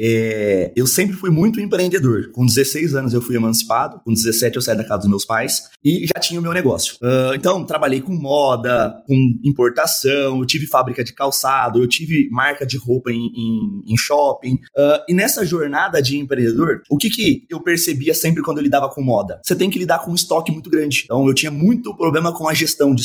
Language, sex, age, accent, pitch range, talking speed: Portuguese, male, 20-39, Brazilian, 130-180 Hz, 205 wpm